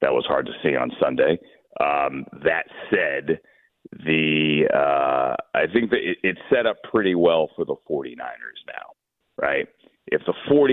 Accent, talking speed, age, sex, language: American, 150 wpm, 40-59, male, English